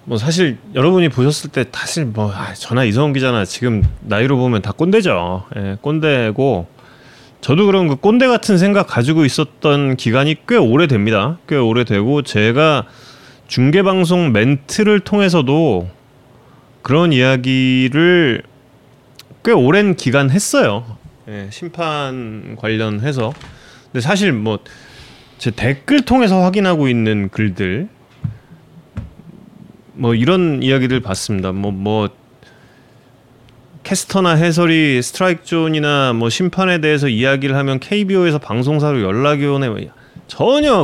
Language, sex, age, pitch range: Korean, male, 30-49, 115-165 Hz